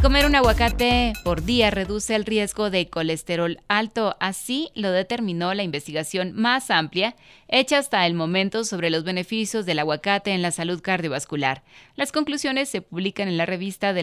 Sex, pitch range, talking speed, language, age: female, 165-215 Hz, 165 wpm, Spanish, 30-49